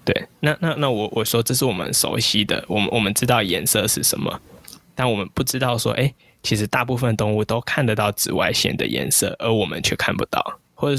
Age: 10-29